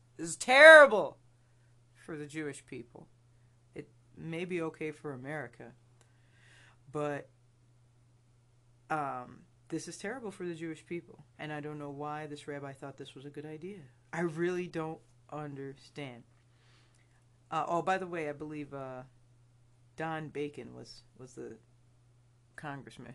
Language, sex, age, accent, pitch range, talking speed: English, female, 40-59, American, 120-175 Hz, 135 wpm